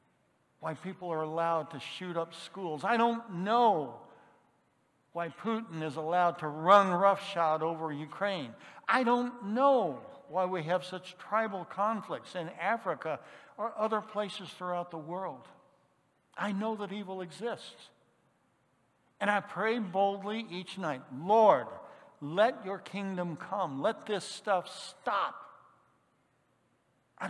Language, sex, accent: English, male, American